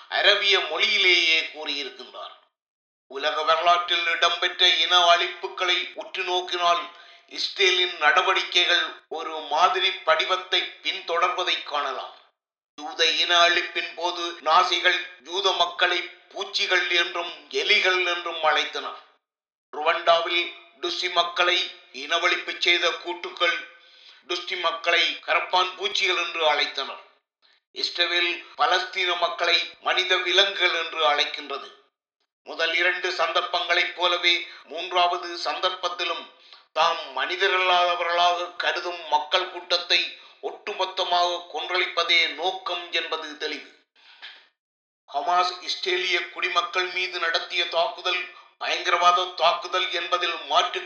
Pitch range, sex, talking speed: 170-180 Hz, male, 70 wpm